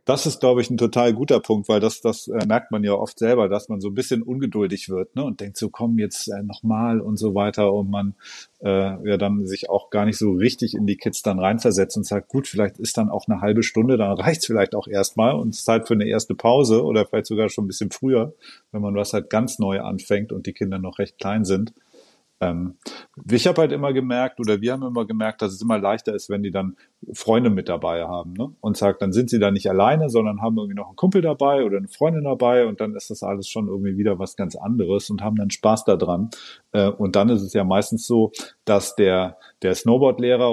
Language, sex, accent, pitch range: German, male, German, 100-115 Hz